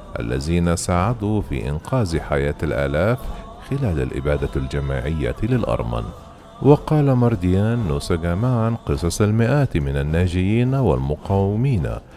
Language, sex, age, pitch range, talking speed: Arabic, male, 40-59, 85-115 Hz, 95 wpm